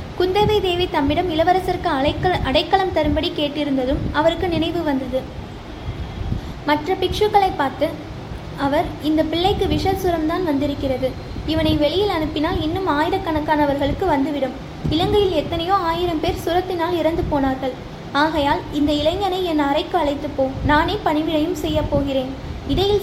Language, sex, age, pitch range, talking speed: Tamil, female, 20-39, 295-355 Hz, 115 wpm